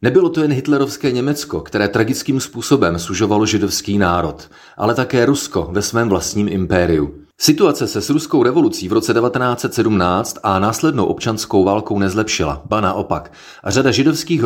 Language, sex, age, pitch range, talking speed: Czech, male, 30-49, 100-135 Hz, 150 wpm